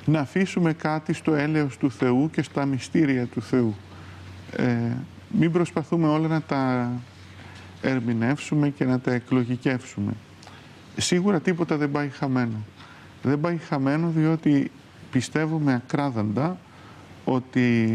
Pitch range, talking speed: 115-160 Hz, 115 wpm